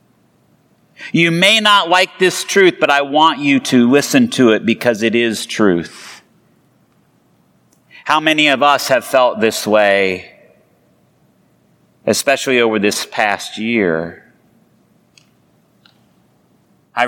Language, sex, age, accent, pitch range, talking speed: English, male, 40-59, American, 135-165 Hz, 110 wpm